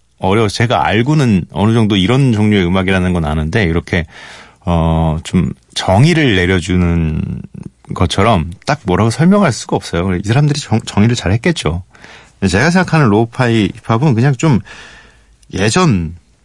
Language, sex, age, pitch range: Korean, male, 40-59, 90-125 Hz